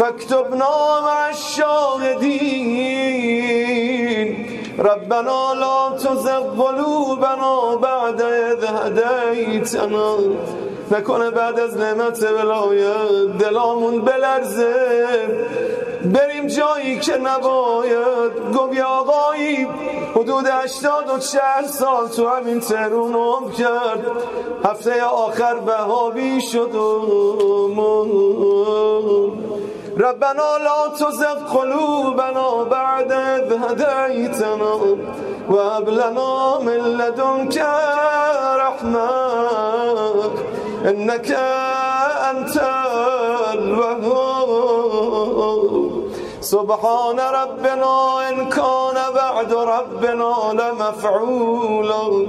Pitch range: 220-265 Hz